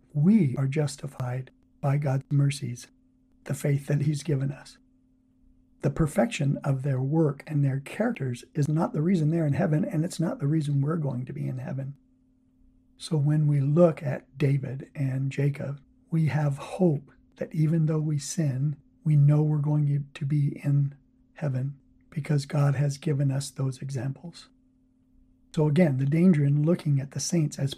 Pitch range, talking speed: 140-165 Hz, 170 wpm